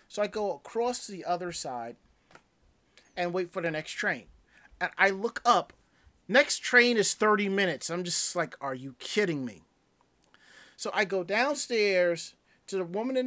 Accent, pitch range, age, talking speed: American, 175-225 Hz, 30-49, 170 wpm